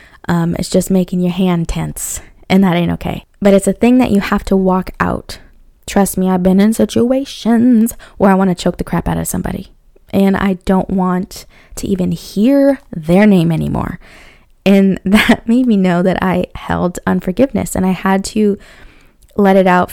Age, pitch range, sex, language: 20-39, 180-205 Hz, female, English